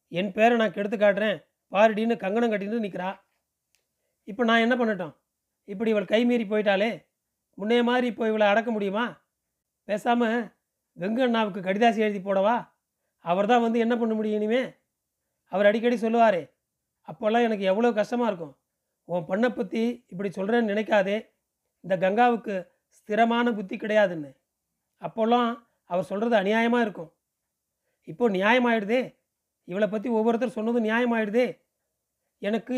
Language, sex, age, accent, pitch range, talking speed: Tamil, male, 40-59, native, 200-235 Hz, 125 wpm